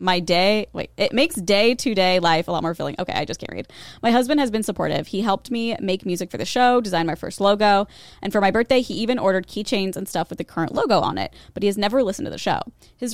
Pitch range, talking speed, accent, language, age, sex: 170-215 Hz, 265 wpm, American, English, 20-39, female